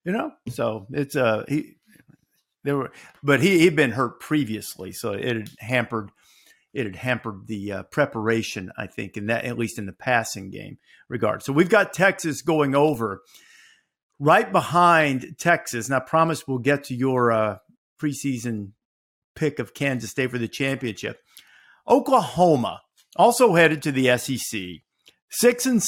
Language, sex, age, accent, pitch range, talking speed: English, male, 50-69, American, 130-170 Hz, 160 wpm